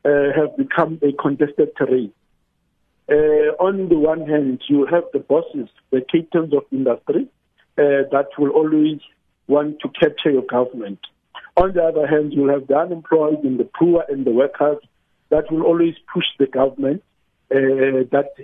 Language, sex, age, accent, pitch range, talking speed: English, male, 50-69, South African, 140-165 Hz, 165 wpm